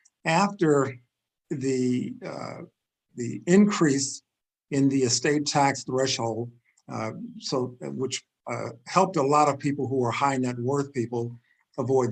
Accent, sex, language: American, male, English